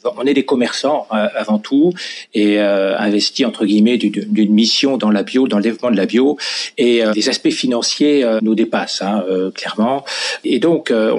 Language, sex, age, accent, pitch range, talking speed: French, male, 40-59, French, 105-160 Hz, 200 wpm